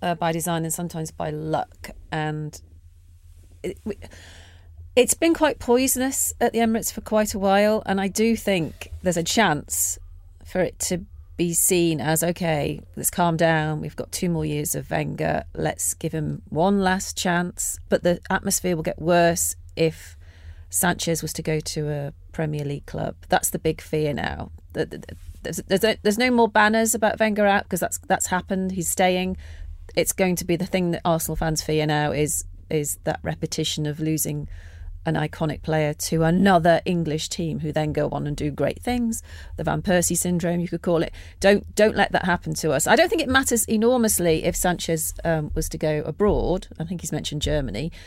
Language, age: English, 40-59